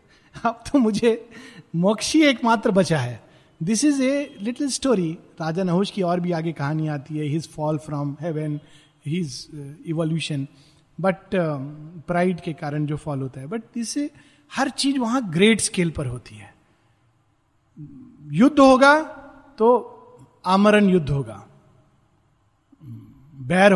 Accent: native